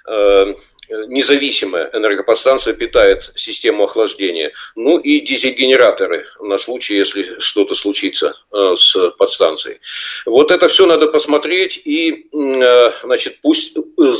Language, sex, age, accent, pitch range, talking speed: Russian, male, 50-69, native, 290-460 Hz, 95 wpm